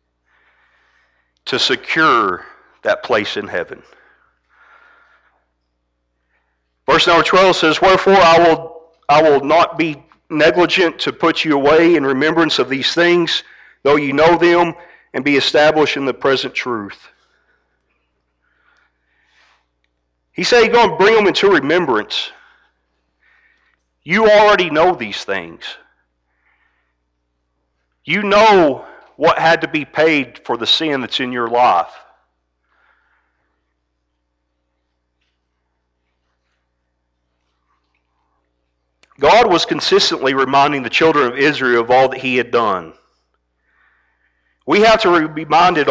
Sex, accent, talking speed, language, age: male, American, 110 wpm, English, 40-59